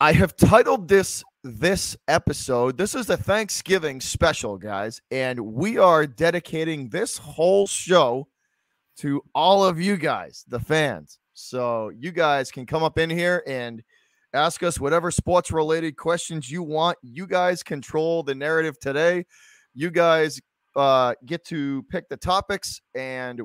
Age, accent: 30-49, American